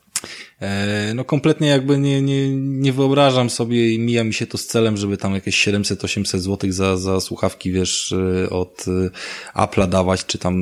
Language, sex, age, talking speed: Polish, male, 20-39, 170 wpm